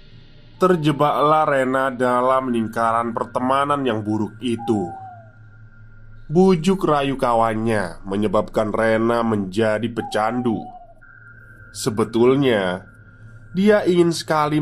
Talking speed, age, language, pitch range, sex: 80 wpm, 20-39, Indonesian, 110-135 Hz, male